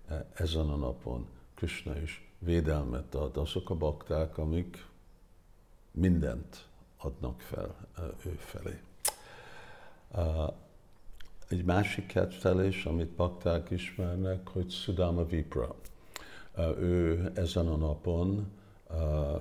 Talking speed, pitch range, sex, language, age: 90 wpm, 80-95 Hz, male, Hungarian, 60-79